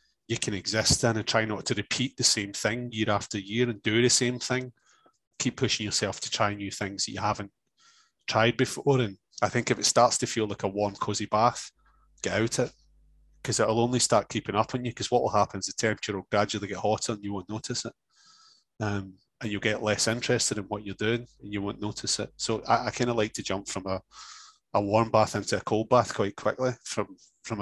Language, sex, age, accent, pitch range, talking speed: English, male, 30-49, British, 105-120 Hz, 235 wpm